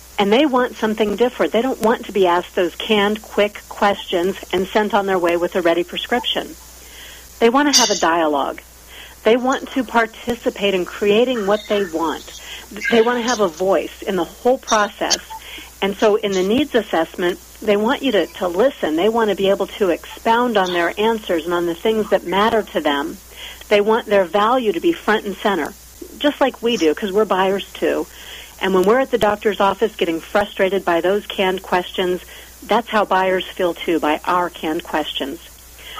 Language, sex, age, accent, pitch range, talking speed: English, female, 50-69, American, 185-225 Hz, 195 wpm